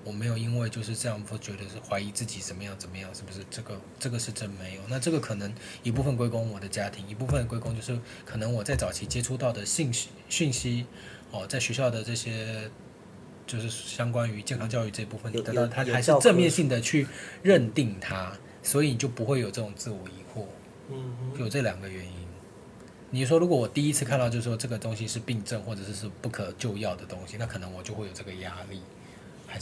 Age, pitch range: 20-39, 100-125 Hz